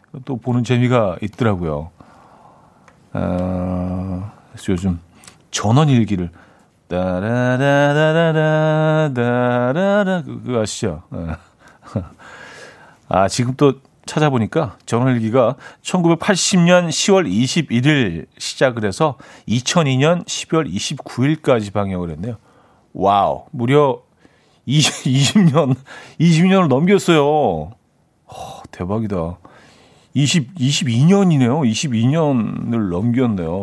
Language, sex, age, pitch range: Korean, male, 40-59, 100-150 Hz